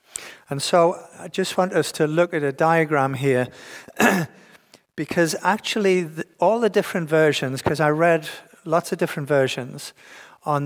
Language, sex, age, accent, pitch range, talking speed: English, male, 50-69, British, 145-180 Hz, 150 wpm